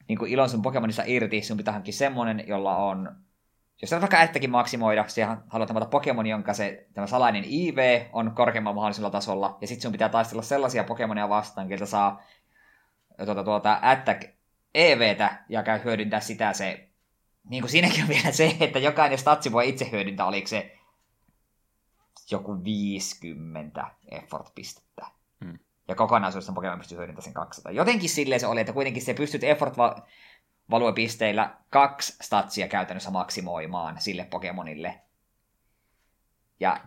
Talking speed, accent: 140 wpm, native